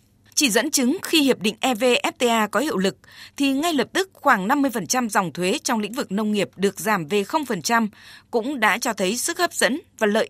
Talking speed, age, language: 210 wpm, 20-39, Vietnamese